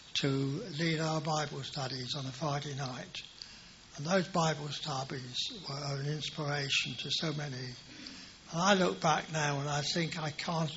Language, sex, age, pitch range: English, male, 60-79, 140-170 Hz